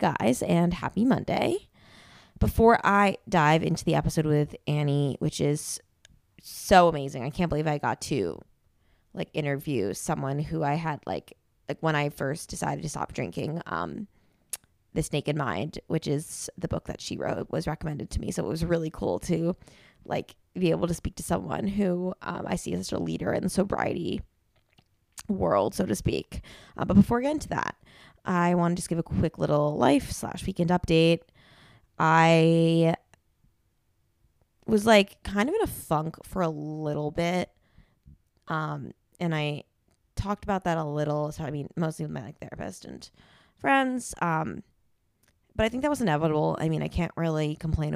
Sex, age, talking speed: female, 20-39, 175 wpm